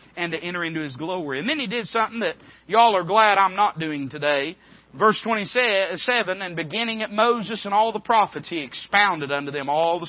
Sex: male